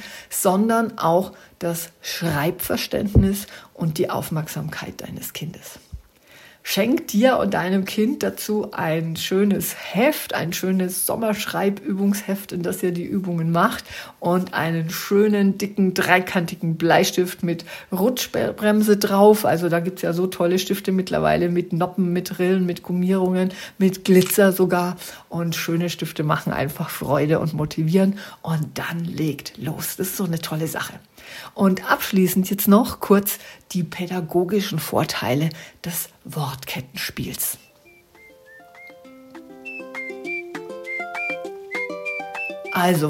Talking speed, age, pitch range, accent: 115 wpm, 50-69, 165-200 Hz, German